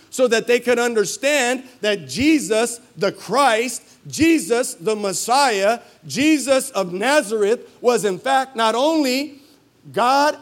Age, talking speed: 50-69, 120 wpm